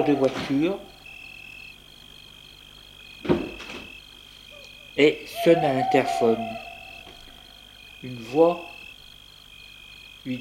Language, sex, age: French, male, 60-79